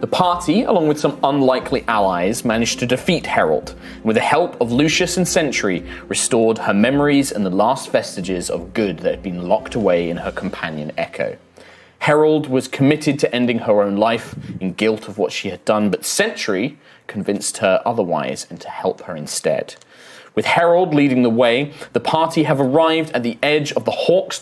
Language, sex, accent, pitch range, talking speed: English, male, British, 110-150 Hz, 190 wpm